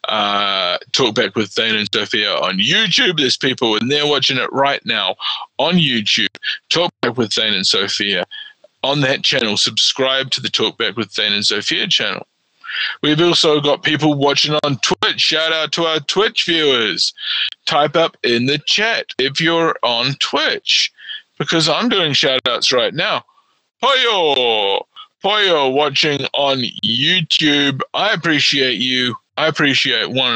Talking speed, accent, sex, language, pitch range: 155 wpm, Australian, male, English, 120-160 Hz